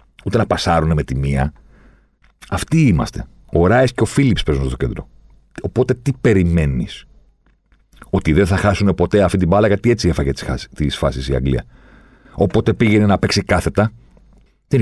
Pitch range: 85-125 Hz